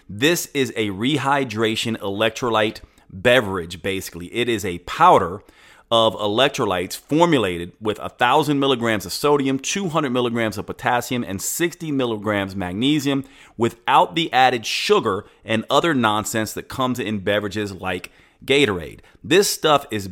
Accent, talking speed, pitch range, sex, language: American, 130 wpm, 105-135 Hz, male, English